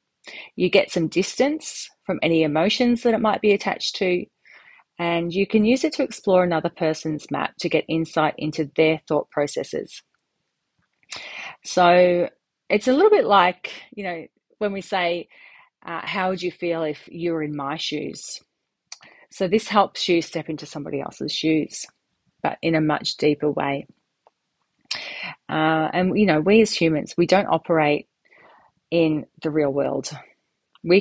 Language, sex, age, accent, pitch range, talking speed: English, female, 30-49, Australian, 160-205 Hz, 160 wpm